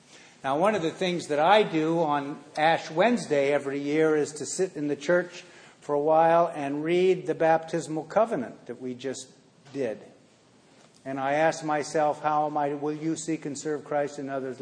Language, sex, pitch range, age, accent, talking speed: English, male, 140-165 Hz, 50-69, American, 190 wpm